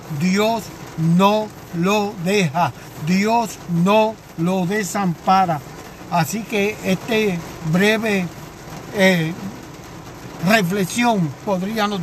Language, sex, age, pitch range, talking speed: Spanish, male, 60-79, 180-230 Hz, 75 wpm